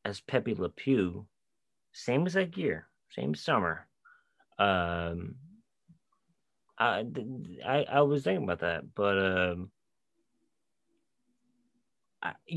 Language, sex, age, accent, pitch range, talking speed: English, male, 30-49, American, 125-195 Hz, 100 wpm